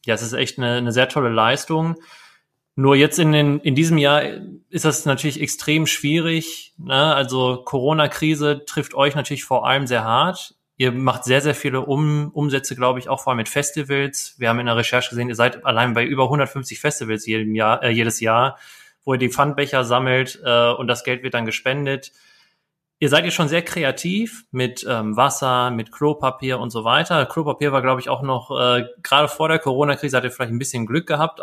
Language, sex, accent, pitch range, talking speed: German, male, German, 125-150 Hz, 205 wpm